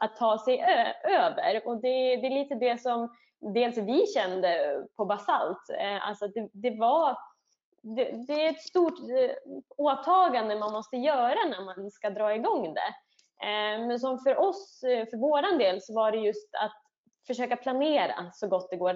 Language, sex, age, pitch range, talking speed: Swedish, female, 20-39, 200-250 Hz, 170 wpm